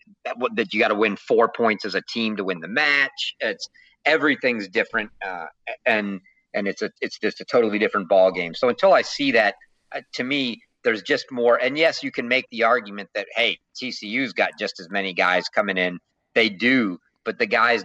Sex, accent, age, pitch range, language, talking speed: male, American, 50-69, 110-150 Hz, English, 210 wpm